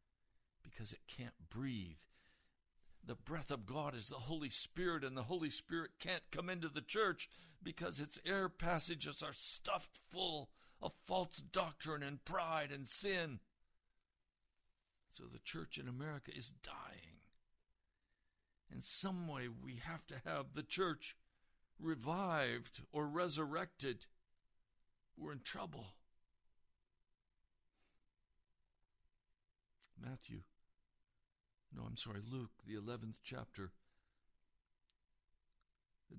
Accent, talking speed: American, 110 wpm